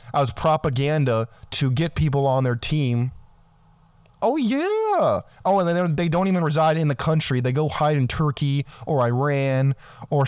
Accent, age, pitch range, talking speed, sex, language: American, 20-39, 135-175 Hz, 160 wpm, male, English